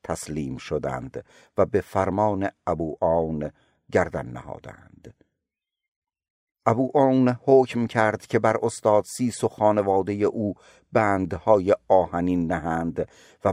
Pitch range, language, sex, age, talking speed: 80-110 Hz, Persian, male, 50-69, 100 wpm